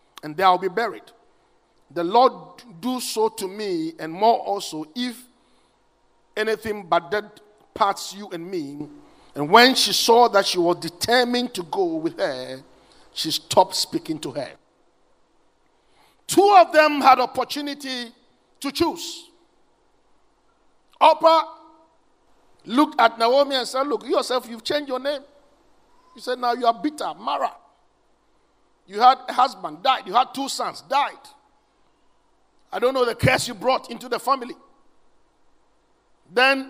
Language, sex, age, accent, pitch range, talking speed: English, male, 50-69, Nigerian, 235-320 Hz, 140 wpm